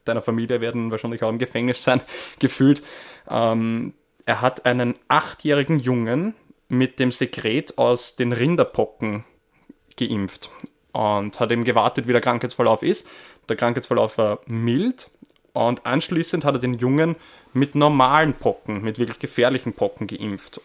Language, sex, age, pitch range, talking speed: German, male, 10-29, 115-140 Hz, 140 wpm